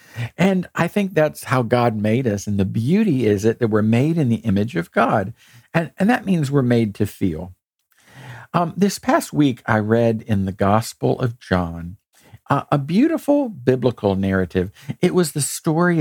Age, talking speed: 50-69, 185 wpm